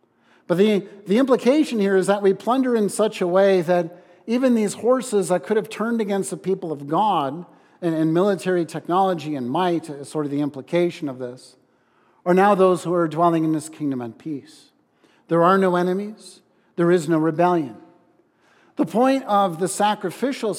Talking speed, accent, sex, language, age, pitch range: 185 wpm, American, male, English, 50-69, 160-200 Hz